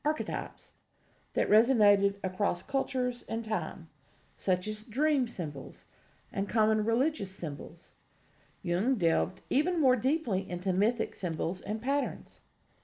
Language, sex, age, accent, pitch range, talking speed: English, female, 50-69, American, 170-230 Hz, 115 wpm